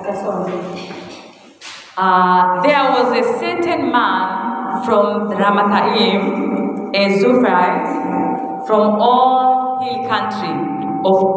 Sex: female